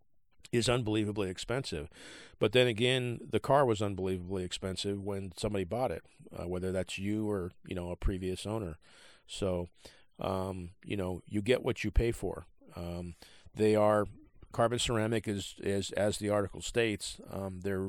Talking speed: 160 wpm